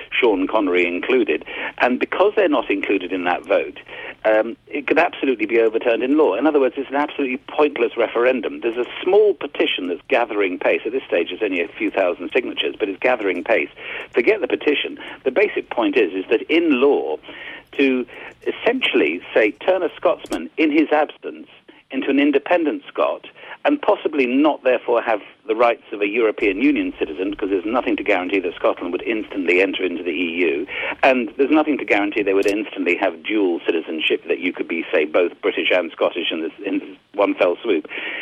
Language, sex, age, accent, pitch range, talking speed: English, male, 50-69, British, 295-435 Hz, 190 wpm